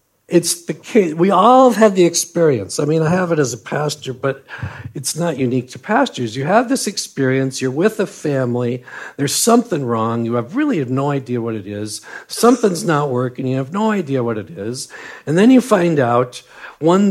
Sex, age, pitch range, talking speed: male, 60-79, 125-185 Hz, 205 wpm